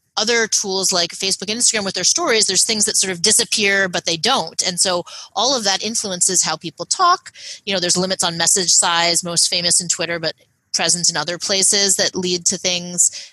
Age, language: 30-49, English